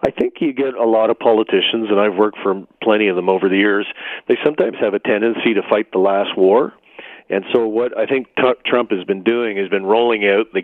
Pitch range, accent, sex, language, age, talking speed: 100-120 Hz, American, male, English, 50-69, 235 wpm